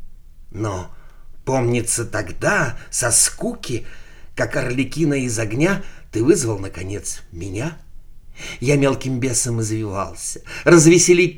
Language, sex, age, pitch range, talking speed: Russian, male, 50-69, 105-170 Hz, 95 wpm